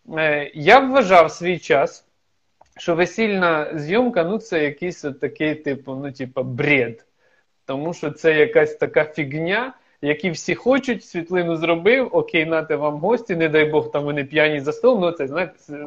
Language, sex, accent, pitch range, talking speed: Ukrainian, male, native, 150-190 Hz, 160 wpm